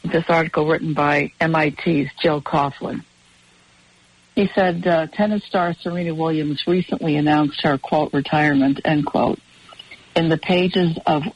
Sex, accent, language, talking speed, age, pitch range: female, American, English, 130 wpm, 60-79, 145-175 Hz